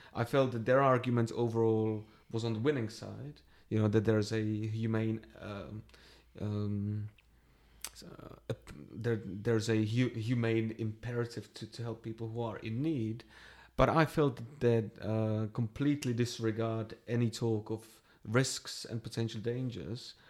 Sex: male